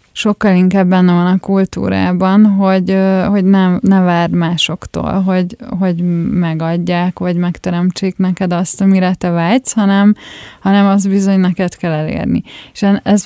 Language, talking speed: Hungarian, 140 wpm